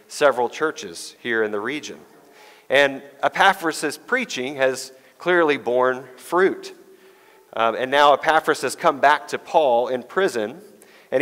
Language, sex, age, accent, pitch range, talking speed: English, male, 40-59, American, 130-185 Hz, 135 wpm